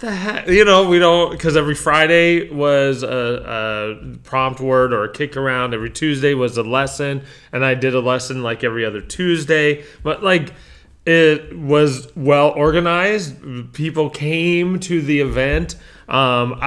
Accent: American